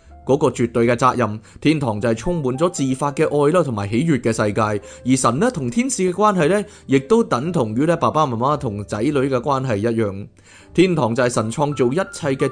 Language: Chinese